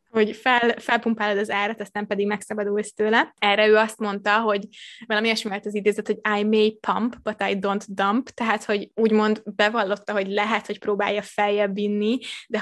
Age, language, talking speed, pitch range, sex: 20-39, Hungarian, 170 wpm, 205-220 Hz, female